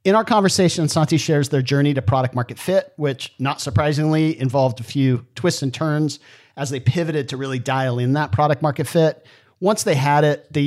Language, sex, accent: English, male, American